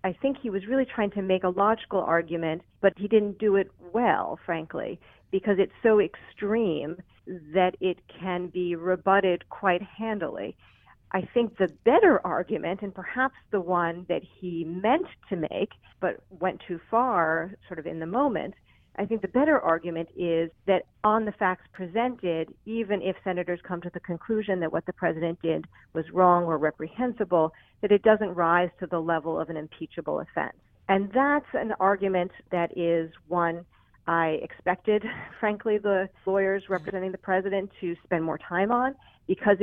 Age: 40-59